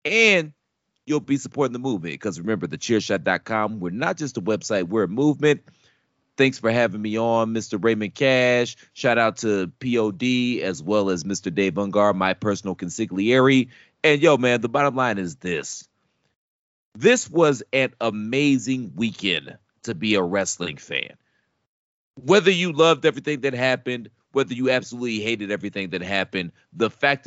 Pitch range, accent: 105-145 Hz, American